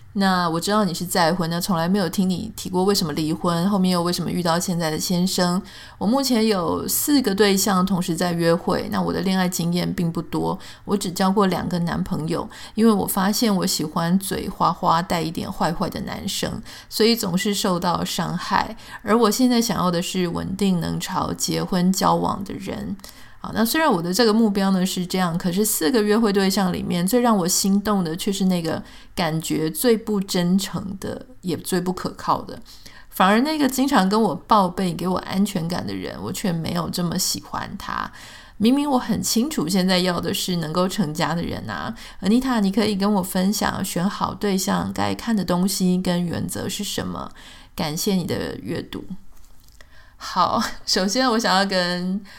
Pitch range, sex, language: 175-205 Hz, female, Chinese